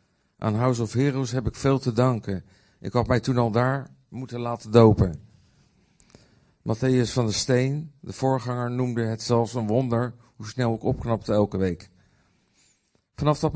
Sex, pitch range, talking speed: male, 105-130 Hz, 165 wpm